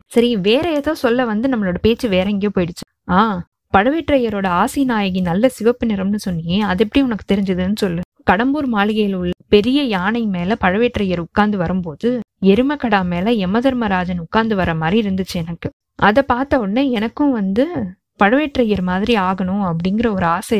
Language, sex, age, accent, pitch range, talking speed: Tamil, female, 20-39, native, 185-245 Hz, 150 wpm